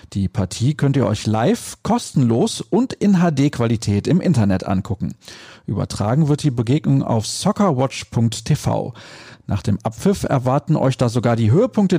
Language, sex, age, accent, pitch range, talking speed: German, male, 40-59, German, 115-150 Hz, 140 wpm